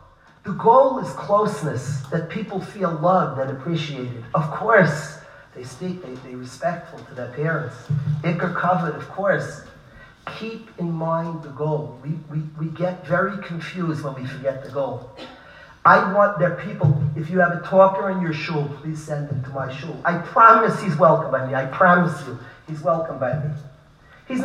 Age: 40-59